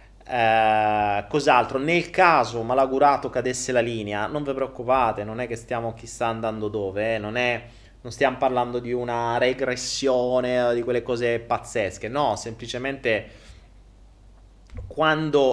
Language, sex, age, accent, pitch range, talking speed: Italian, male, 30-49, native, 105-145 Hz, 125 wpm